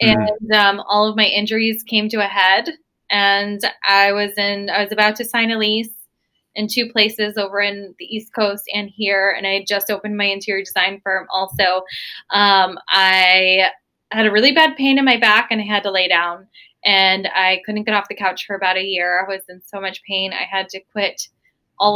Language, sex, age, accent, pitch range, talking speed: English, female, 20-39, American, 190-210 Hz, 215 wpm